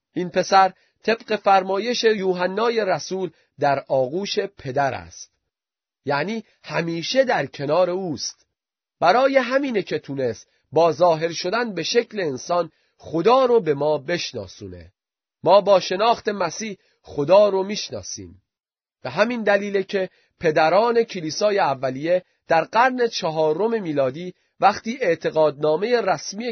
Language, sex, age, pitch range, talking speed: Persian, male, 30-49, 155-225 Hz, 115 wpm